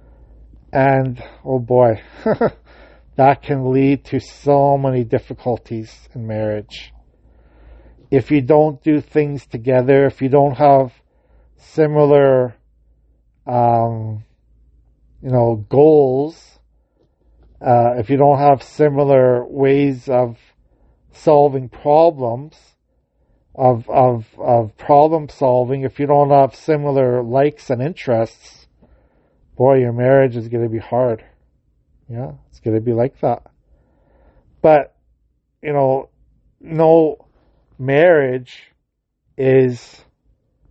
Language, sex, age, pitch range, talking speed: English, male, 50-69, 110-140 Hz, 105 wpm